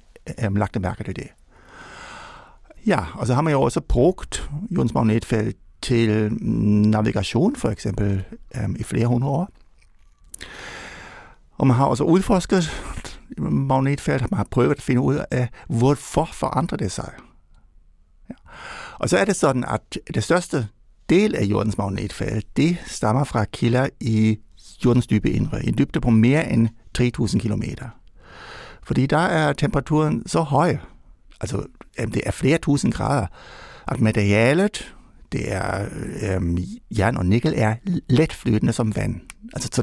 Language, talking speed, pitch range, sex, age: Danish, 140 wpm, 105-145 Hz, male, 60-79